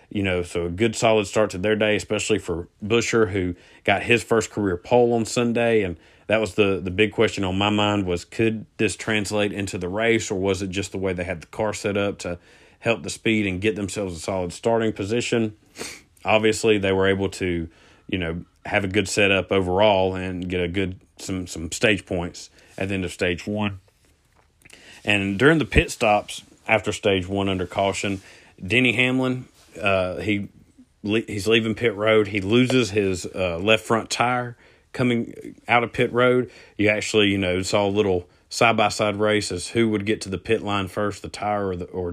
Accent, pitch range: American, 95-110 Hz